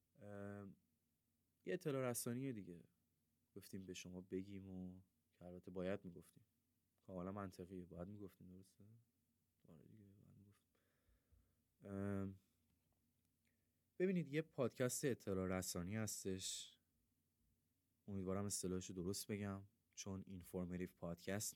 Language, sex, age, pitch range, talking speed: Persian, male, 20-39, 90-105 Hz, 95 wpm